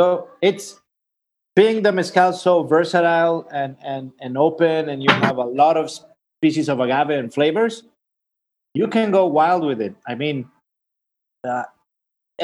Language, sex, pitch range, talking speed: Spanish, male, 135-165 Hz, 150 wpm